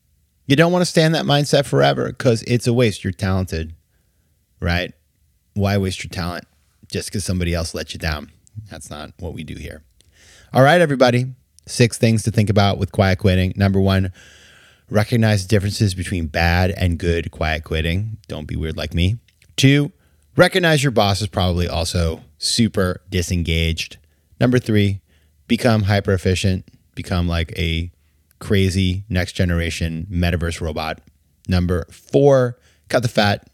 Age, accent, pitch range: 30-49, American, 85-110 Hz